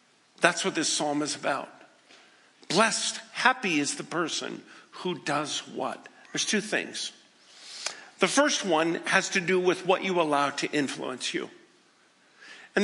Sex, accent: male, American